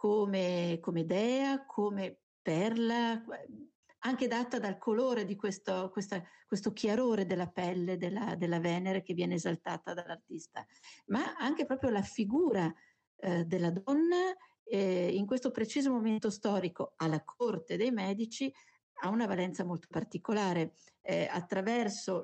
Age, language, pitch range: 50-69, Italian, 185-245 Hz